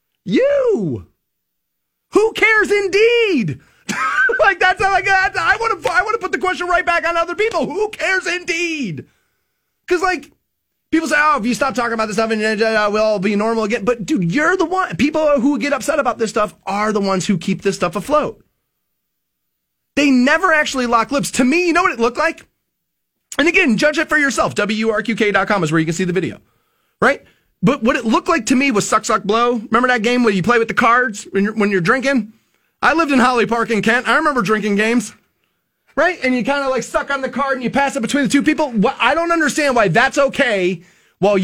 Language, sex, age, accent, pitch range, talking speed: English, male, 30-49, American, 210-300 Hz, 220 wpm